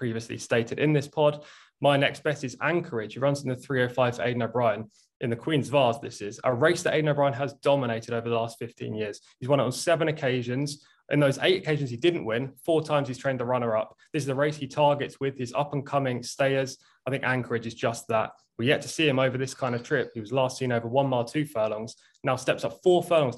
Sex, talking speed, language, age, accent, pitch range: male, 245 wpm, English, 20-39, British, 120-150 Hz